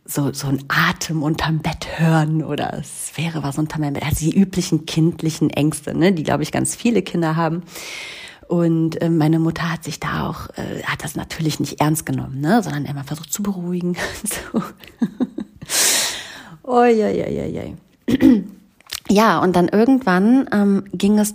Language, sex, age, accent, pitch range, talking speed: German, female, 30-49, German, 160-210 Hz, 170 wpm